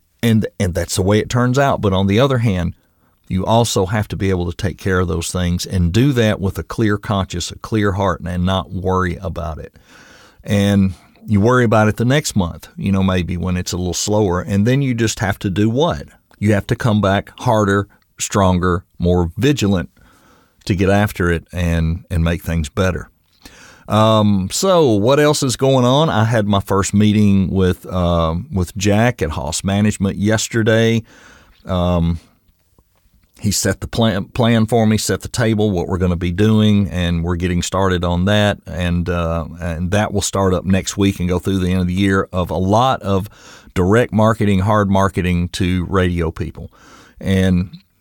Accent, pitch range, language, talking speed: American, 90-105 Hz, English, 190 wpm